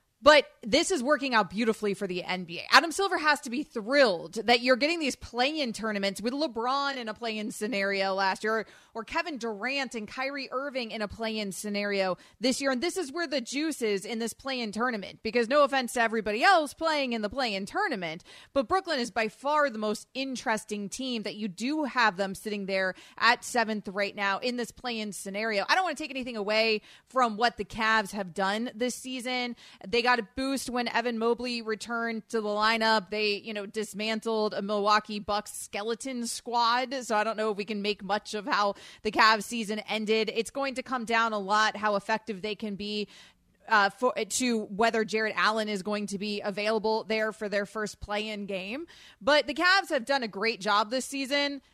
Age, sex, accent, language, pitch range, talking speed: 30-49, female, American, English, 210-260 Hz, 205 wpm